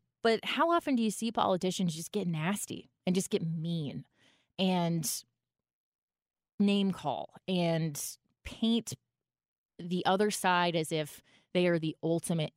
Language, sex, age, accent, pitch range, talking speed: English, female, 20-39, American, 155-215 Hz, 135 wpm